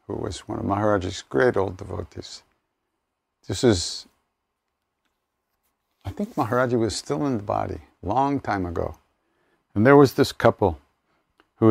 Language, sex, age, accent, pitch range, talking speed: English, male, 60-79, American, 100-125 Hz, 140 wpm